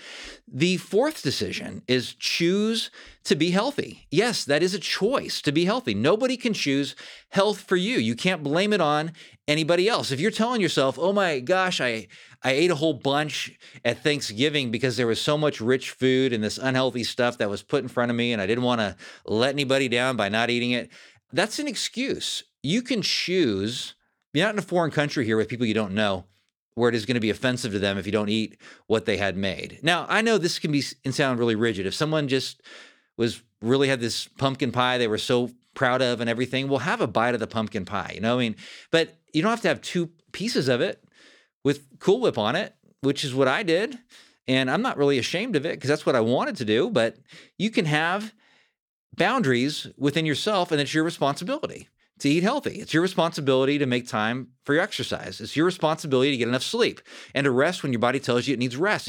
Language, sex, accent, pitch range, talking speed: English, male, American, 120-170 Hz, 225 wpm